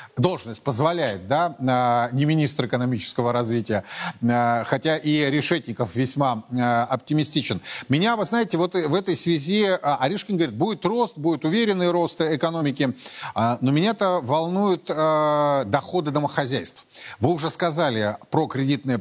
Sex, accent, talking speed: male, native, 120 wpm